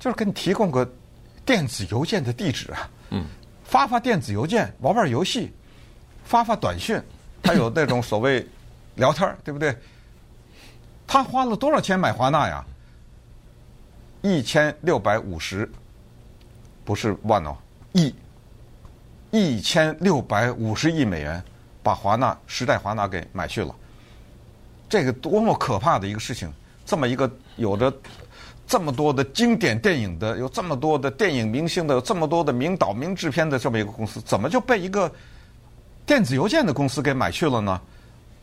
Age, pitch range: 60-79, 105-160 Hz